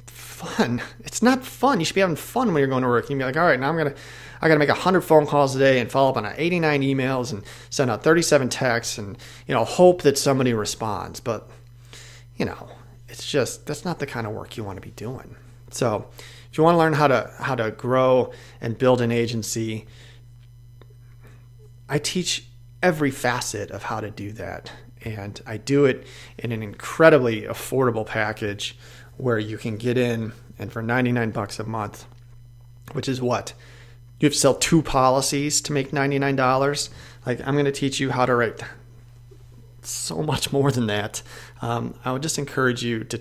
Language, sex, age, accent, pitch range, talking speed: English, male, 30-49, American, 120-140 Hz, 200 wpm